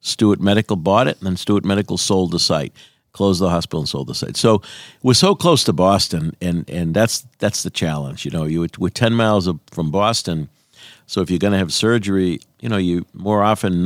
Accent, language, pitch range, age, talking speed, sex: American, English, 80-105 Hz, 50-69, 215 wpm, male